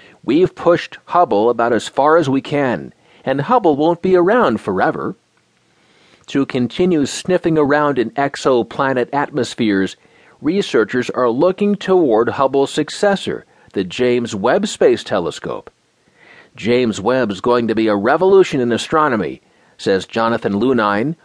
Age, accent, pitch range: 40-59, American, 115-155 Hz